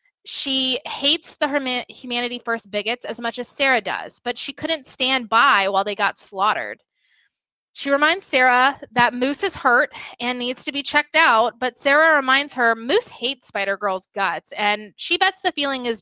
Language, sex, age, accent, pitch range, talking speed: English, female, 20-39, American, 230-290 Hz, 180 wpm